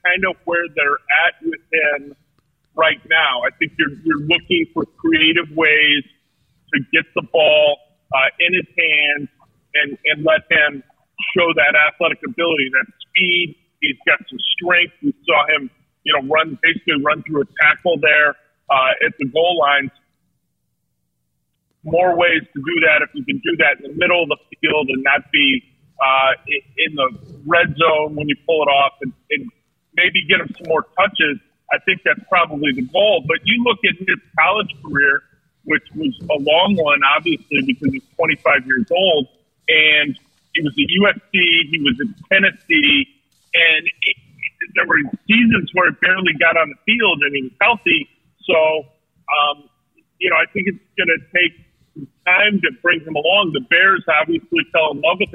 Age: 40-59